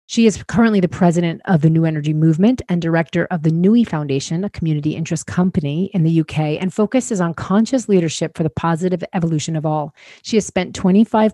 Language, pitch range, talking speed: English, 155-185 Hz, 200 wpm